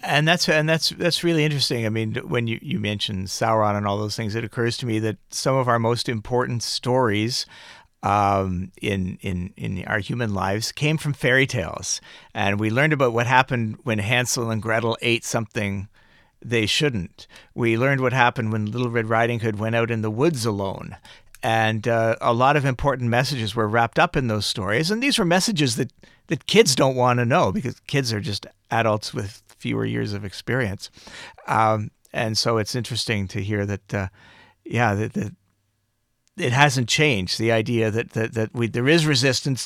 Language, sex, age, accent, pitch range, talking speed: English, male, 50-69, American, 105-125 Hz, 190 wpm